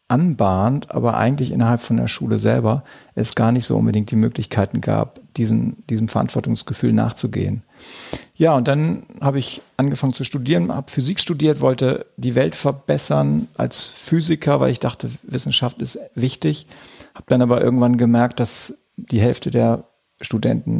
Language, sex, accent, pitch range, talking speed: German, male, German, 115-135 Hz, 150 wpm